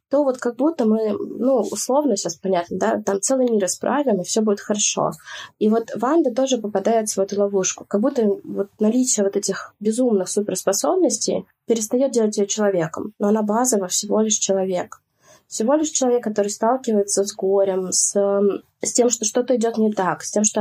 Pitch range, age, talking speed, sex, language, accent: 190-225 Hz, 20-39, 185 wpm, female, Russian, native